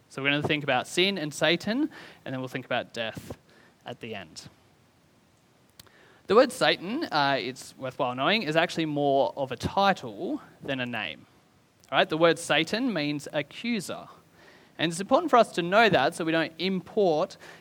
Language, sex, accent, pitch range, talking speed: English, male, Australian, 140-175 Hz, 175 wpm